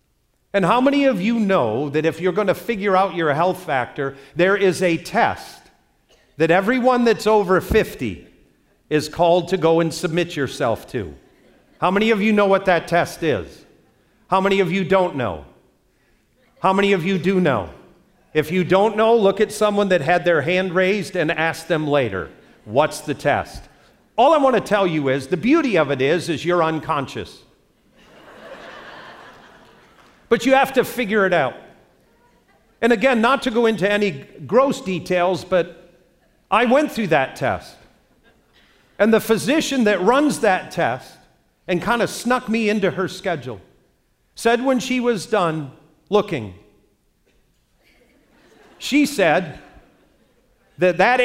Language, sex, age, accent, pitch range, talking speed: English, male, 50-69, American, 165-215 Hz, 160 wpm